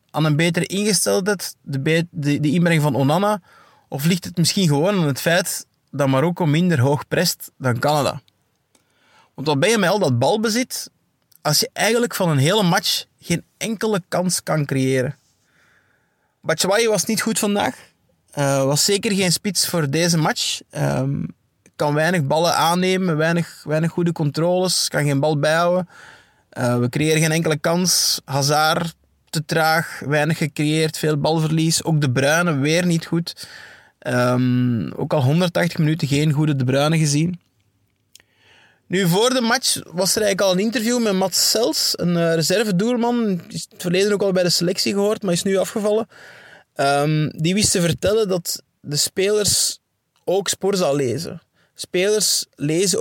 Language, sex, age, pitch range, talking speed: Dutch, male, 20-39, 150-190 Hz, 160 wpm